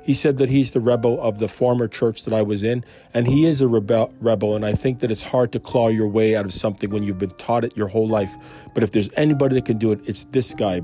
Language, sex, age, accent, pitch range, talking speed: English, male, 40-59, American, 105-130 Hz, 290 wpm